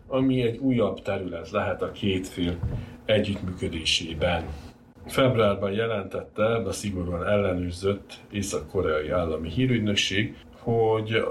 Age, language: 60-79, Hungarian